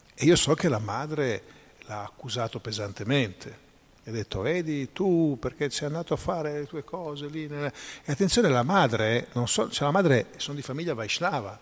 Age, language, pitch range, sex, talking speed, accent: 50-69, Italian, 115-145 Hz, male, 180 wpm, native